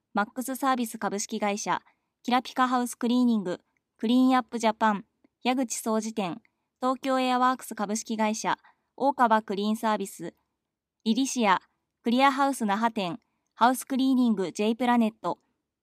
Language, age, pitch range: Japanese, 20-39, 215-260 Hz